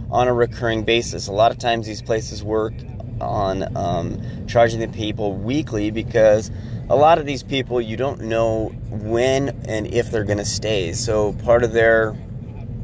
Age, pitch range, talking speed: 30-49, 110-120 Hz, 170 wpm